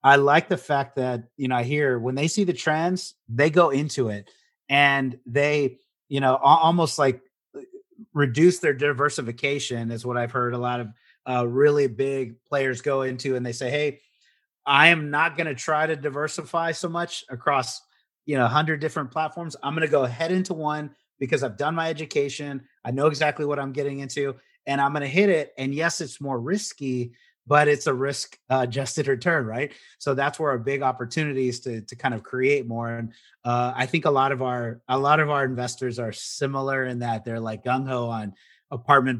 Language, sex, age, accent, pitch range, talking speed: English, male, 30-49, American, 125-145 Hz, 205 wpm